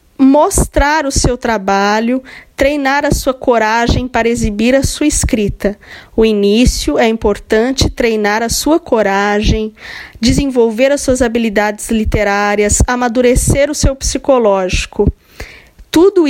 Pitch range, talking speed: 220-275 Hz, 115 wpm